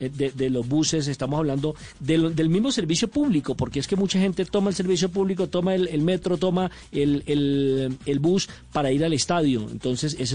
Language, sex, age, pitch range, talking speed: Spanish, male, 40-59, 140-185 Hz, 190 wpm